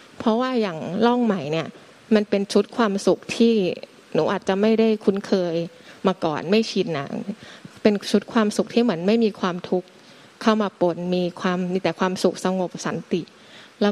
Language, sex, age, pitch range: Thai, female, 20-39, 185-220 Hz